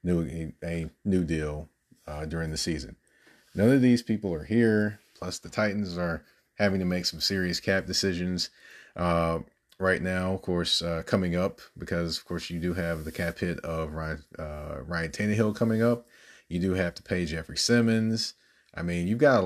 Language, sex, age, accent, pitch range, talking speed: English, male, 30-49, American, 85-100 Hz, 190 wpm